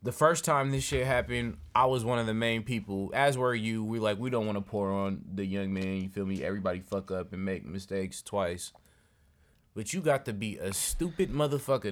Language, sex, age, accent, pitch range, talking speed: English, male, 20-39, American, 100-140 Hz, 225 wpm